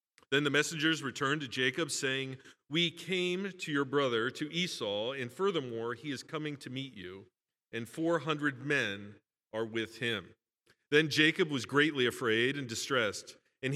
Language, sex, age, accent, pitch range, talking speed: English, male, 40-59, American, 130-160 Hz, 160 wpm